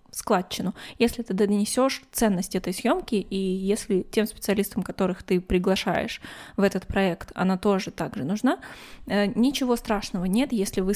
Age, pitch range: 20-39, 195-235 Hz